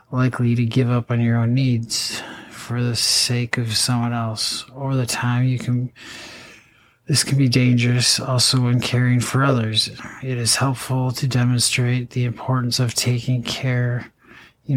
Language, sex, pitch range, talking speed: English, male, 120-130 Hz, 160 wpm